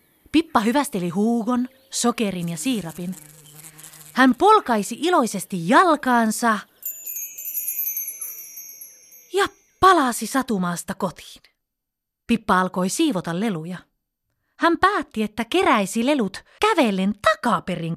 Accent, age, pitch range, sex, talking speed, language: native, 30-49, 180-265 Hz, female, 85 wpm, Finnish